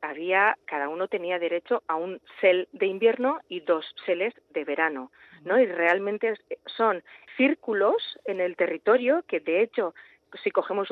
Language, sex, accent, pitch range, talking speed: Spanish, female, Spanish, 175-245 Hz, 155 wpm